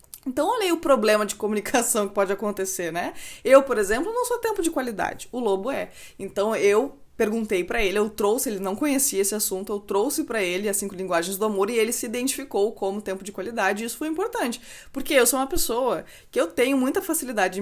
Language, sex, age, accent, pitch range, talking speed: Portuguese, female, 20-39, Brazilian, 190-260 Hz, 220 wpm